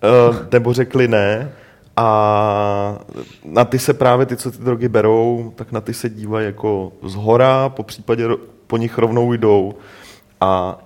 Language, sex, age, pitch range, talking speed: Czech, male, 30-49, 105-120 Hz, 155 wpm